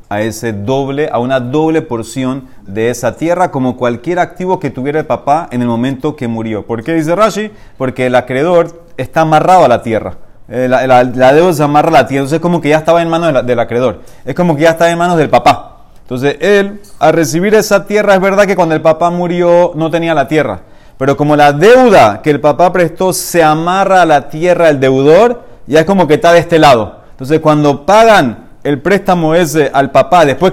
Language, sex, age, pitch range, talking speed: Spanish, male, 30-49, 135-185 Hz, 220 wpm